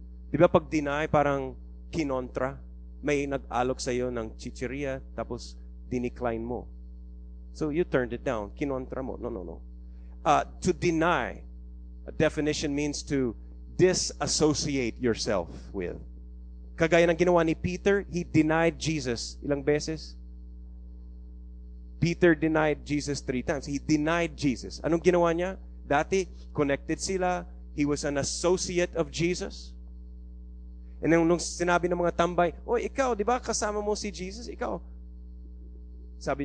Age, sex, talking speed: 30-49, male, 130 wpm